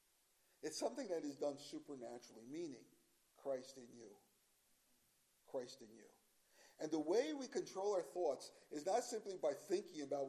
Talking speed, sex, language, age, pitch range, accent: 150 wpm, male, English, 50-69, 135-180 Hz, American